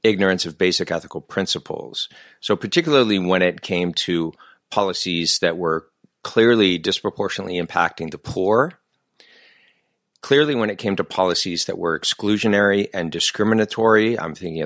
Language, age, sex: English, 50-69, male